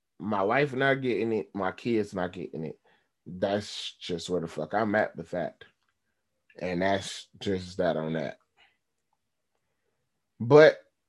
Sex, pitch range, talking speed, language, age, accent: male, 120-185 Hz, 140 wpm, English, 30-49, American